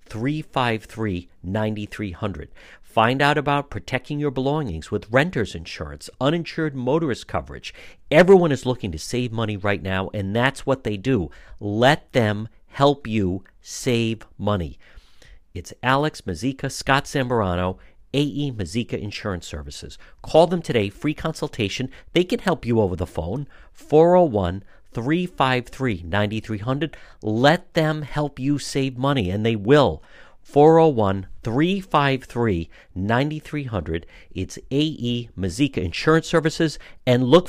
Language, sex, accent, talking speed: English, male, American, 115 wpm